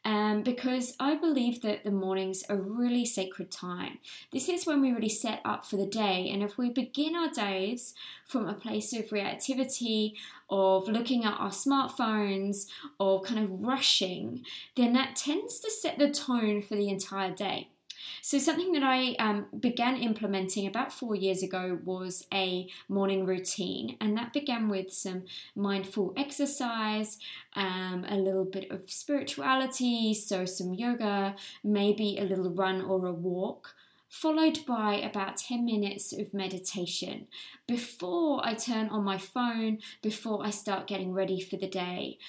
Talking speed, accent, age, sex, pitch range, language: 160 wpm, British, 20-39, female, 195-255 Hz, English